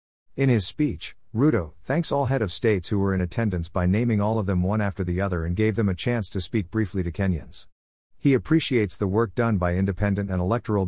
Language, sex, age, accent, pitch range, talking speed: English, male, 50-69, American, 90-115 Hz, 225 wpm